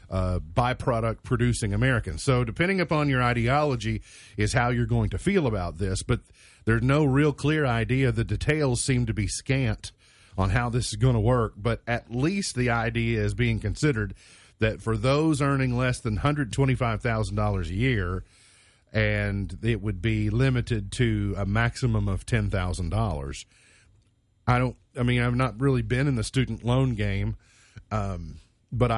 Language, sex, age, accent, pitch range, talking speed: English, male, 40-59, American, 105-125 Hz, 160 wpm